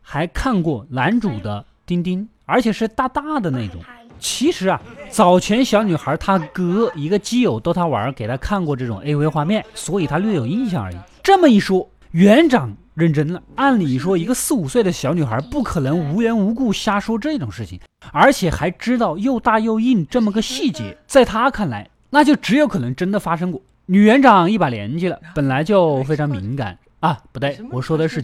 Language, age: Chinese, 20-39